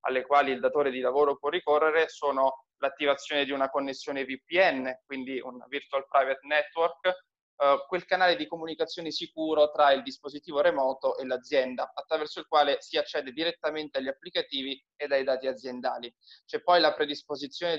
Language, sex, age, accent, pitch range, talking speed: Italian, male, 20-39, native, 135-160 Hz, 155 wpm